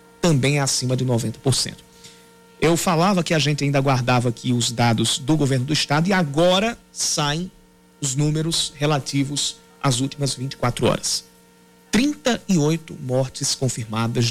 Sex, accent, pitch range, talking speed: male, Brazilian, 120-160 Hz, 135 wpm